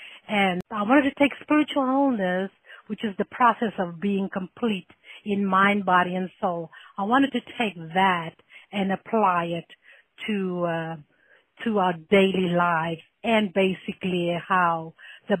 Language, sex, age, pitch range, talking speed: English, female, 60-79, 175-215 Hz, 140 wpm